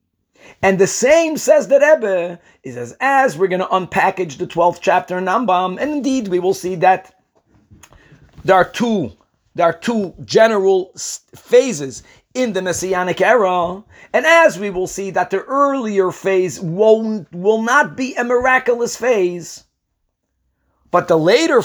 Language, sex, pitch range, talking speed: English, male, 180-245 Hz, 150 wpm